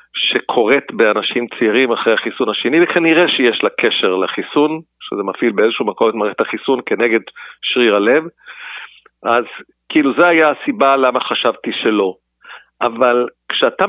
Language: Hebrew